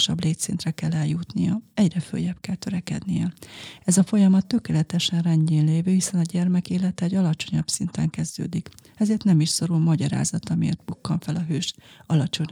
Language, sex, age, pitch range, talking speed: Hungarian, female, 30-49, 165-185 Hz, 155 wpm